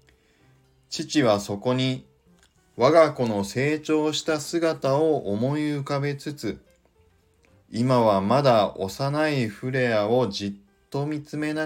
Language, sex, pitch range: Japanese, male, 95-150 Hz